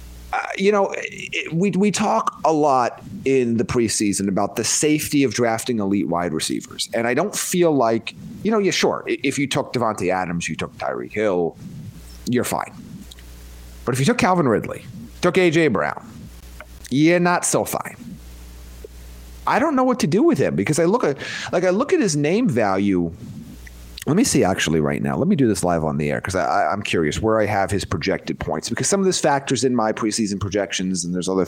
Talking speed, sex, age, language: 200 wpm, male, 30-49, English